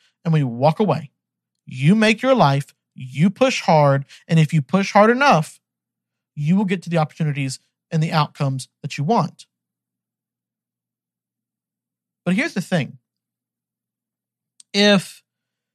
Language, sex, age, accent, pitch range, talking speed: English, male, 50-69, American, 125-180 Hz, 135 wpm